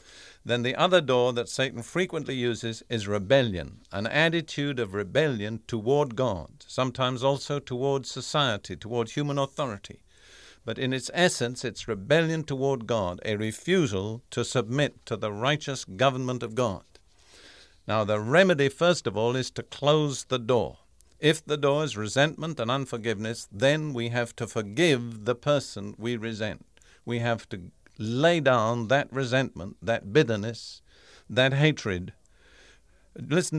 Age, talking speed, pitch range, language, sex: 50-69, 145 wpm, 115-145 Hz, English, male